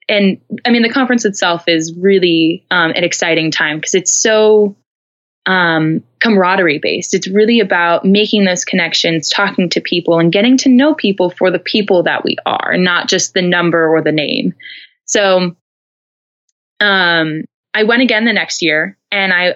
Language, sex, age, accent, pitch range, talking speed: English, female, 20-39, American, 180-245 Hz, 170 wpm